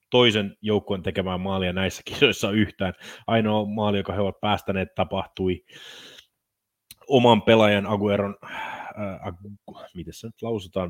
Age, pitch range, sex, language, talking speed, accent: 30-49, 90-105 Hz, male, Finnish, 125 wpm, native